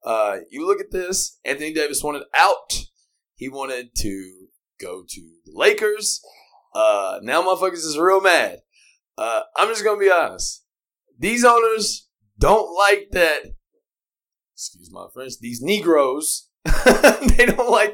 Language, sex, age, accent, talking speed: English, male, 20-39, American, 135 wpm